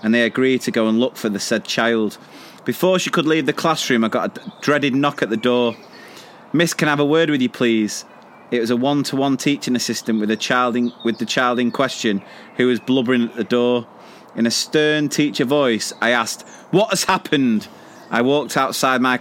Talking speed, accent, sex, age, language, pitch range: 215 wpm, British, male, 30-49, English, 125-185 Hz